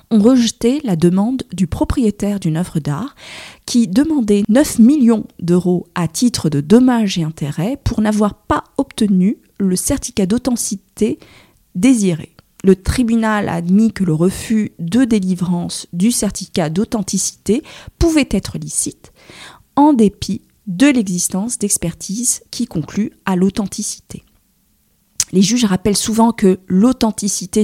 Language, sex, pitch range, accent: French, female, 175-225 Hz, French